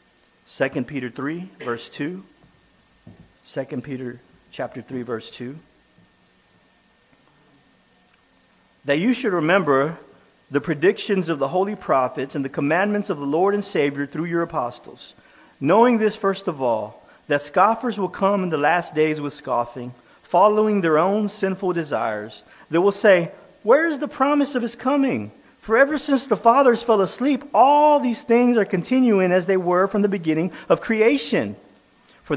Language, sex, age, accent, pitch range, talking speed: English, male, 40-59, American, 145-215 Hz, 155 wpm